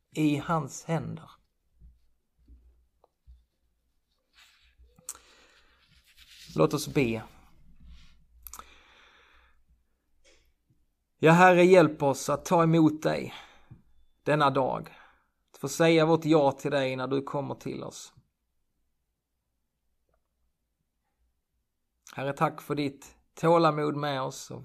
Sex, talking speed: male, 90 wpm